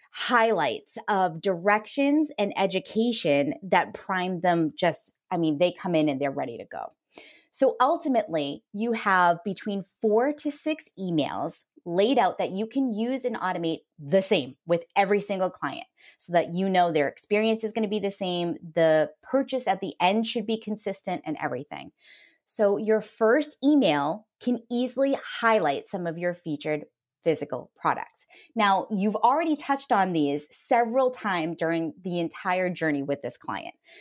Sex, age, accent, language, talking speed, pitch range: female, 20-39, American, English, 160 wpm, 170-240 Hz